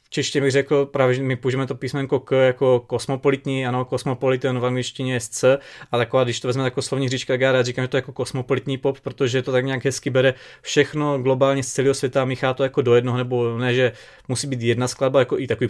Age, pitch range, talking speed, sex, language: 20-39, 125-140 Hz, 235 wpm, male, Czech